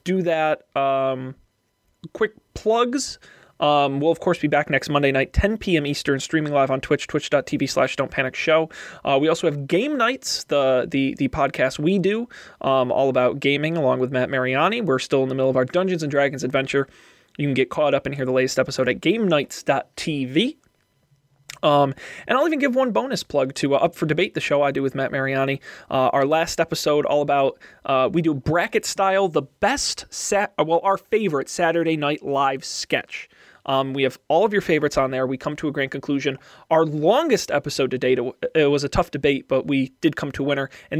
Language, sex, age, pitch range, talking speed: English, male, 20-39, 135-165 Hz, 210 wpm